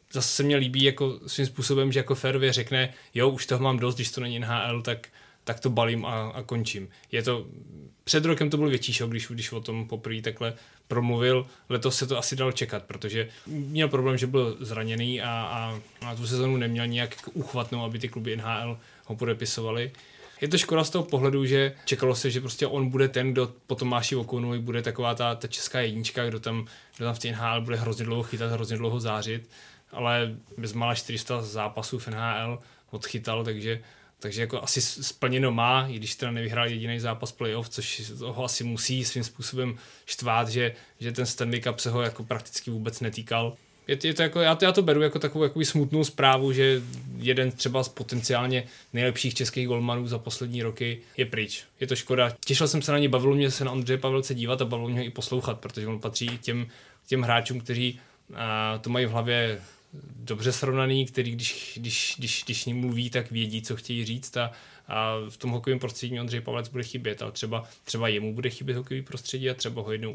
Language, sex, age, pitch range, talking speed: Czech, male, 20-39, 115-130 Hz, 205 wpm